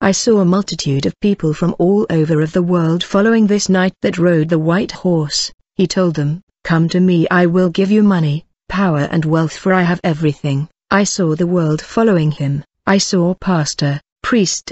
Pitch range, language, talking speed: 160-190 Hz, English, 195 wpm